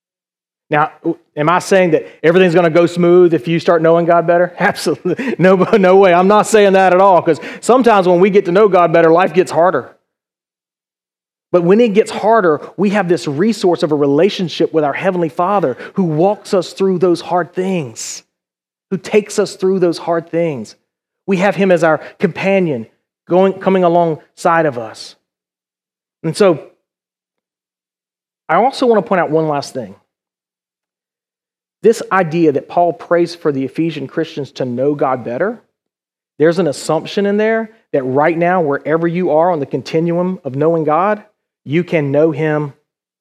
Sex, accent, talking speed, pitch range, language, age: male, American, 170 wpm, 150-185 Hz, English, 30-49